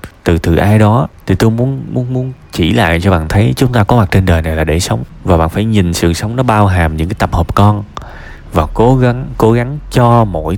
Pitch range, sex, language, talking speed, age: 85-120 Hz, male, Vietnamese, 255 wpm, 20-39